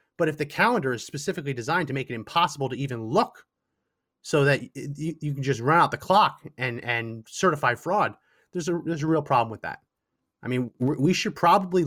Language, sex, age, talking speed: English, male, 30-49, 205 wpm